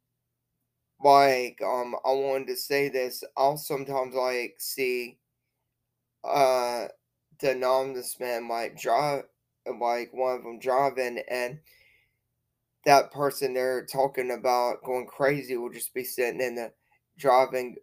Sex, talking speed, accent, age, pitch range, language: male, 125 wpm, American, 20-39, 120-135 Hz, English